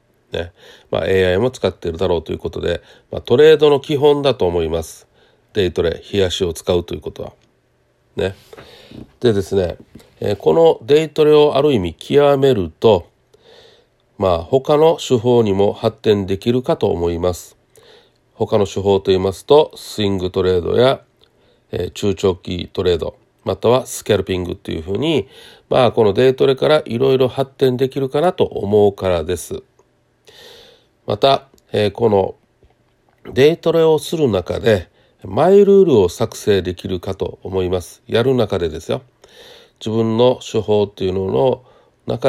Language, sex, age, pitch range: Japanese, male, 40-59, 95-145 Hz